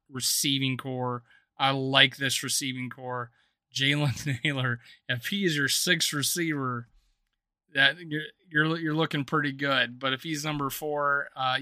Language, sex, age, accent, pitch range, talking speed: English, male, 30-49, American, 130-155 Hz, 140 wpm